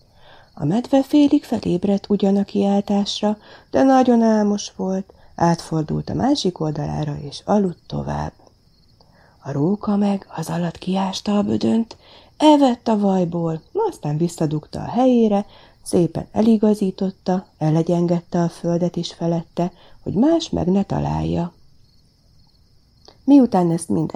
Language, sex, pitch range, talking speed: Hungarian, female, 155-225 Hz, 120 wpm